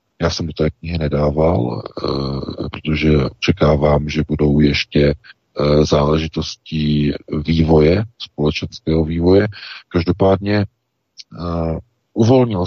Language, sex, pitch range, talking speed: Czech, male, 75-95 Hz, 95 wpm